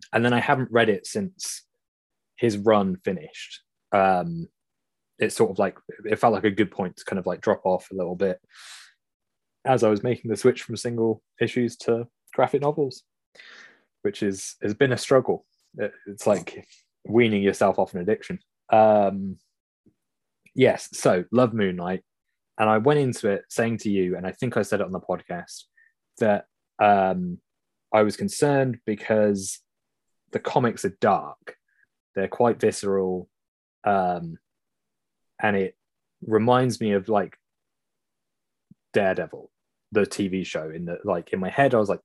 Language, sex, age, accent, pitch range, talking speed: English, male, 20-39, British, 95-120 Hz, 155 wpm